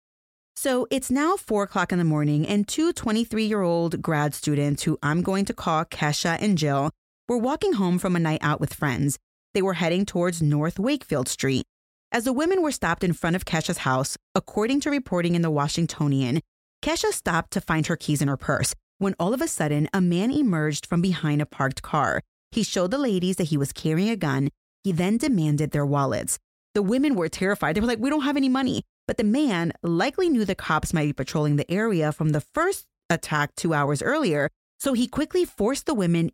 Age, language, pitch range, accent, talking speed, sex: 30-49, English, 150-220 Hz, American, 210 wpm, female